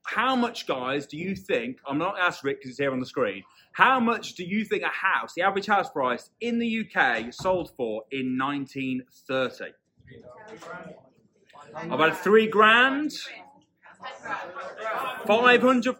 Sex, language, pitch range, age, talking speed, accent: male, English, 170-250 Hz, 30-49, 145 wpm, British